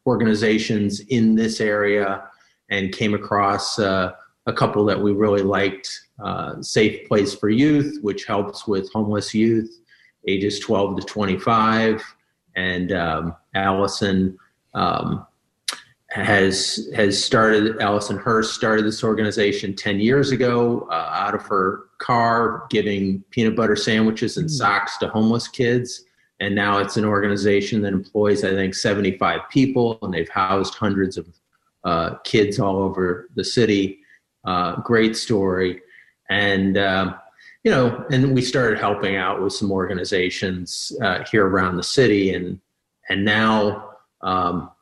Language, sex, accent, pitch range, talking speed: English, male, American, 100-115 Hz, 140 wpm